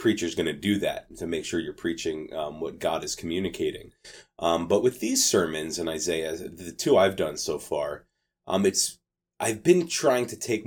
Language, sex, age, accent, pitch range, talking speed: English, male, 30-49, American, 85-130 Hz, 200 wpm